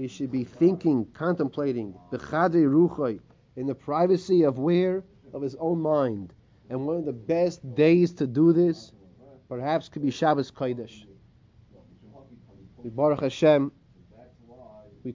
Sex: male